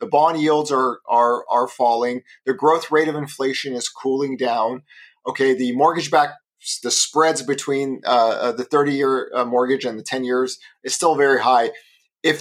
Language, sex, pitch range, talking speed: English, male, 125-155 Hz, 185 wpm